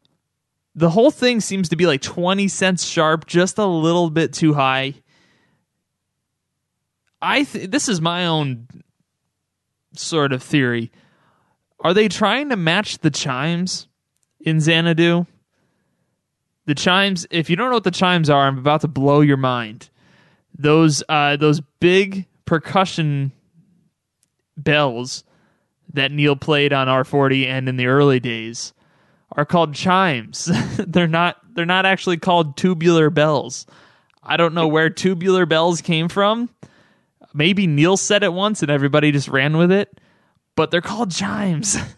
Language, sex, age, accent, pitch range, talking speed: English, male, 20-39, American, 140-180 Hz, 145 wpm